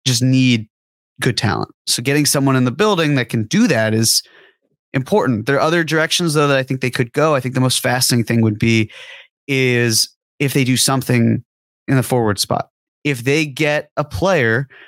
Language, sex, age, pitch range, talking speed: English, male, 30-49, 125-155 Hz, 200 wpm